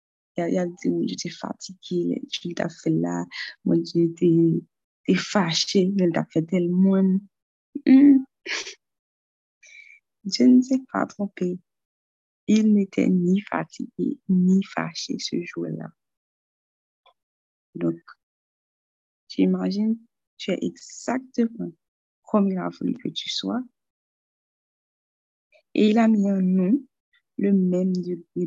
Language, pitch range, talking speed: French, 180-240 Hz, 110 wpm